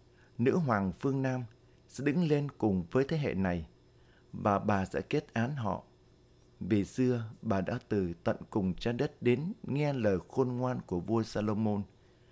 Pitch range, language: 100-125 Hz, Vietnamese